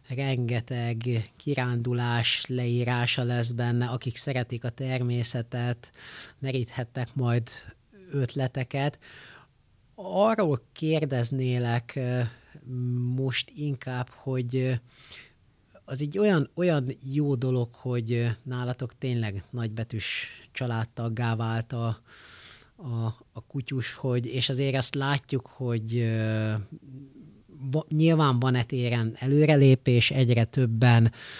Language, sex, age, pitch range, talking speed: Hungarian, male, 30-49, 115-130 Hz, 85 wpm